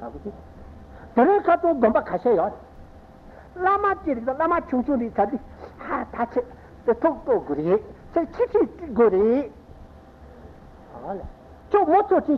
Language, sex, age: Italian, male, 60-79